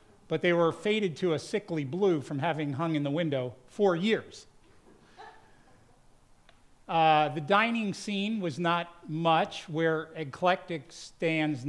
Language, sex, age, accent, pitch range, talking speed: English, male, 50-69, American, 150-185 Hz, 135 wpm